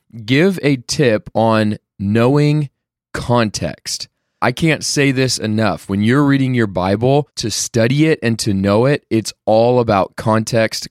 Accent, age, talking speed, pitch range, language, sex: American, 20-39, 150 wpm, 110-150 Hz, English, male